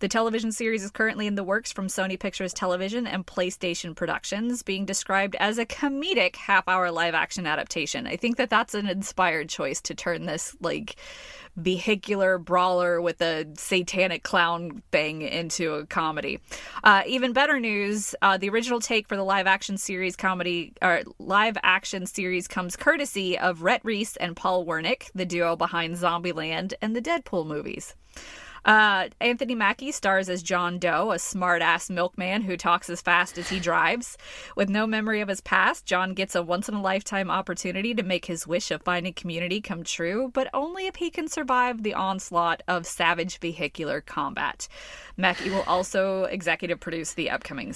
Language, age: English, 20-39